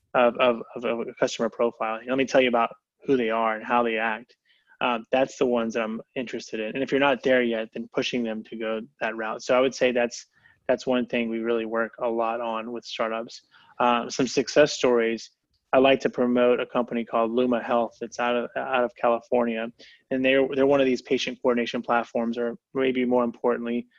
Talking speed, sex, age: 220 wpm, male, 20-39